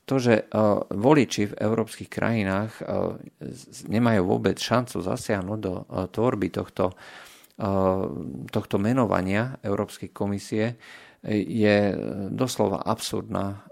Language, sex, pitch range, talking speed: Slovak, male, 95-110 Hz, 90 wpm